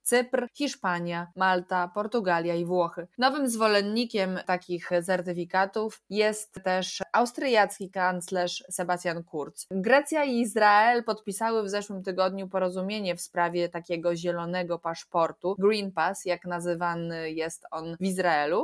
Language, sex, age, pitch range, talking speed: Polish, female, 20-39, 175-215 Hz, 120 wpm